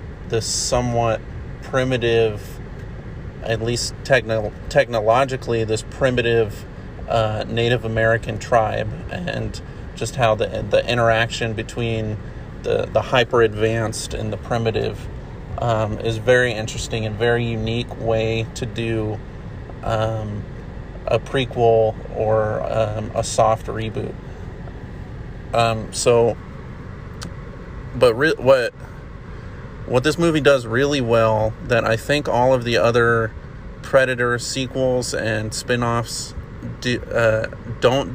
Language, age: English, 30-49